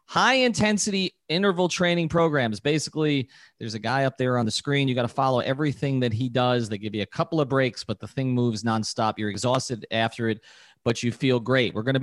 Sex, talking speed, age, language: male, 220 wpm, 40-59, English